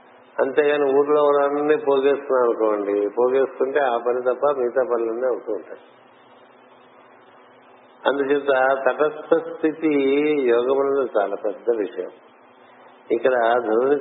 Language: Telugu